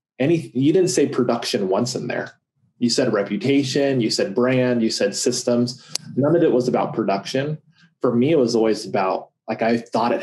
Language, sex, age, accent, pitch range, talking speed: Spanish, male, 20-39, American, 115-140 Hz, 195 wpm